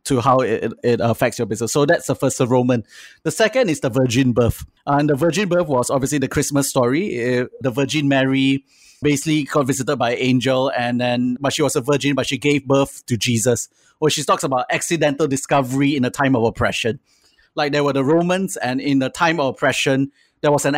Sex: male